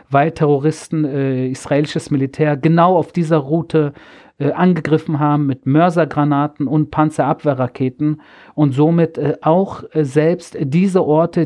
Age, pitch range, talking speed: 40-59, 140-160 Hz, 125 wpm